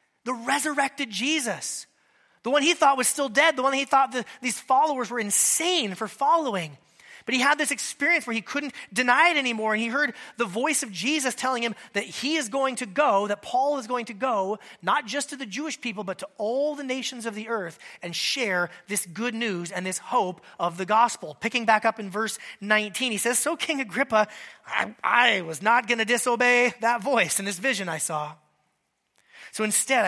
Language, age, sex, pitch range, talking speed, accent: English, 30-49, male, 205-275 Hz, 210 wpm, American